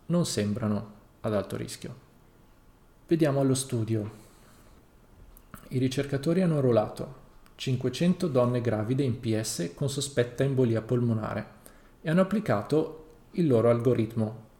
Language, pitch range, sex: Italian, 110-135 Hz, male